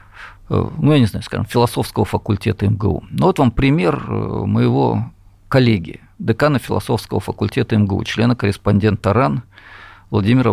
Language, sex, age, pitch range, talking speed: Russian, male, 50-69, 100-125 Hz, 120 wpm